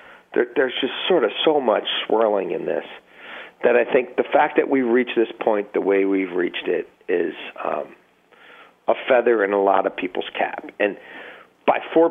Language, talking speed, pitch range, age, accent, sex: English, 185 wpm, 105-125 Hz, 40-59, American, male